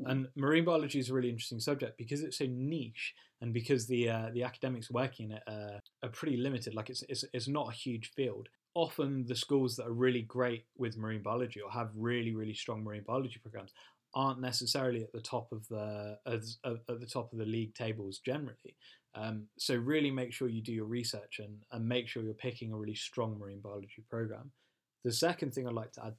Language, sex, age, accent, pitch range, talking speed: English, male, 10-29, British, 110-130 Hz, 220 wpm